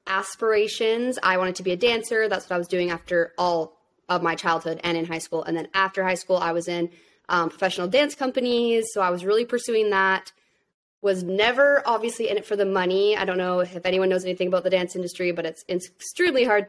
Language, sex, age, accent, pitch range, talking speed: English, female, 20-39, American, 175-205 Hz, 225 wpm